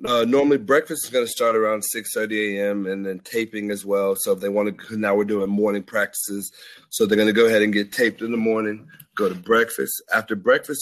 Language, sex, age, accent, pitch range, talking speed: English, male, 30-49, American, 100-115 Hz, 240 wpm